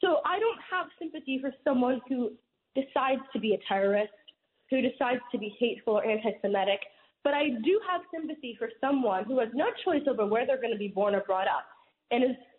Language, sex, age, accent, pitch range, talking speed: English, female, 20-39, American, 215-295 Hz, 205 wpm